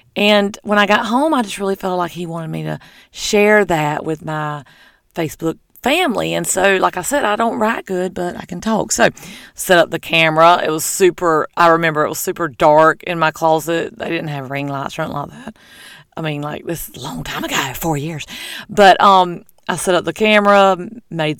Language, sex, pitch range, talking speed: English, female, 160-195 Hz, 220 wpm